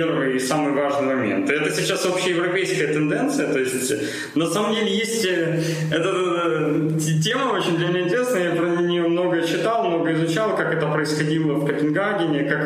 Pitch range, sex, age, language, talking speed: 145-175 Hz, male, 20-39, Russian, 140 wpm